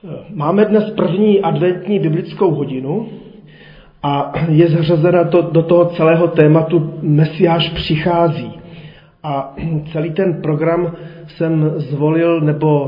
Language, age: Czech, 40-59